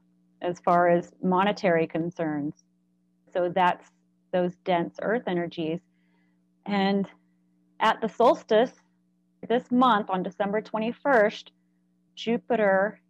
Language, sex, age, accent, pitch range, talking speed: English, female, 30-49, American, 145-195 Hz, 95 wpm